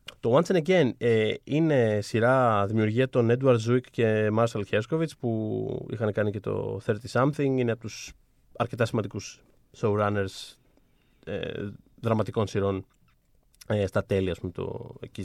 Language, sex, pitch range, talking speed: Greek, male, 105-130 Hz, 140 wpm